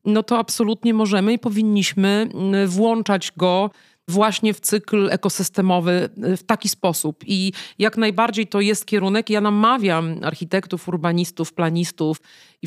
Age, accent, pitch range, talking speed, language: 40-59, native, 190-230 Hz, 130 wpm, Polish